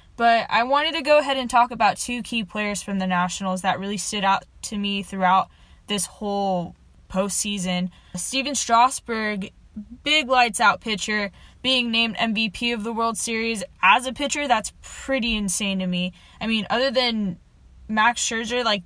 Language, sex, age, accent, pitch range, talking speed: English, female, 10-29, American, 200-245 Hz, 165 wpm